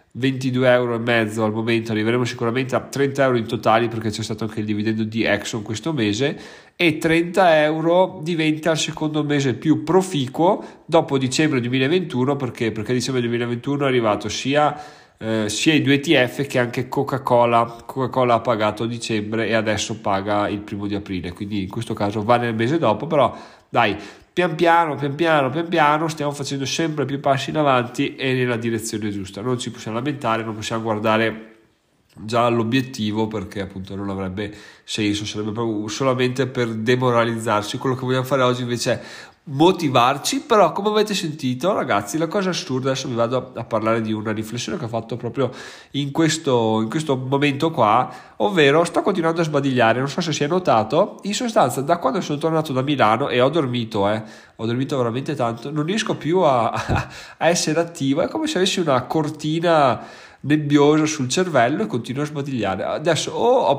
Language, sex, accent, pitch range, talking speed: Italian, male, native, 115-150 Hz, 180 wpm